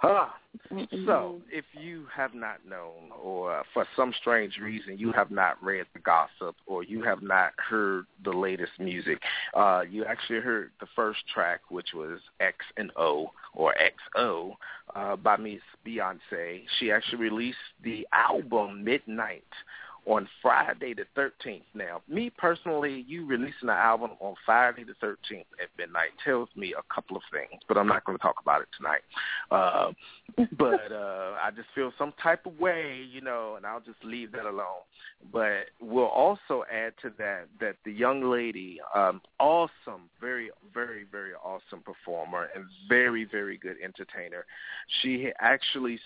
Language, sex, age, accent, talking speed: English, male, 40-59, American, 160 wpm